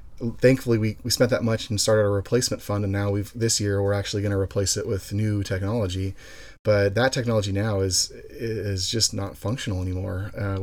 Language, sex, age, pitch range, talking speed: English, male, 30-49, 100-110 Hz, 205 wpm